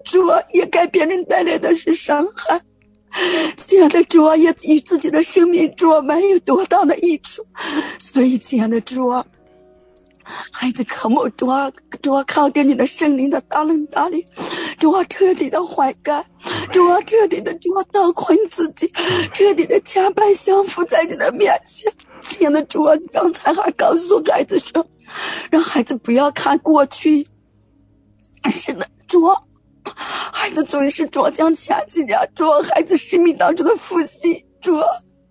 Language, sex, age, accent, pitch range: English, female, 50-69, Chinese, 290-360 Hz